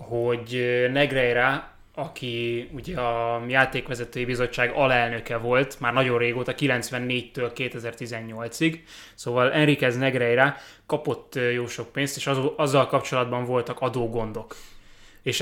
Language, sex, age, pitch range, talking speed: Hungarian, male, 20-39, 115-140 Hz, 105 wpm